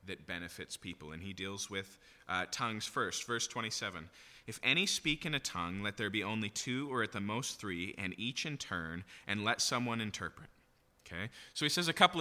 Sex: male